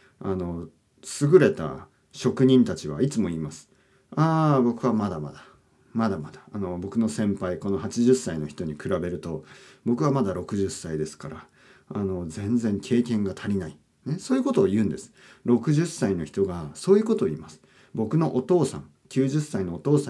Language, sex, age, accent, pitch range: Japanese, male, 40-59, native, 95-130 Hz